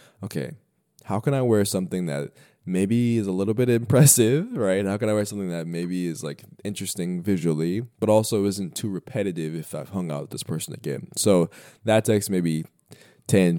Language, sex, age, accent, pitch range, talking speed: English, male, 20-39, American, 85-110 Hz, 190 wpm